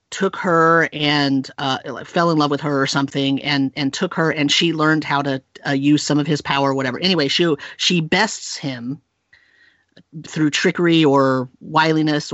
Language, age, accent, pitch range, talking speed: English, 40-59, American, 140-160 Hz, 180 wpm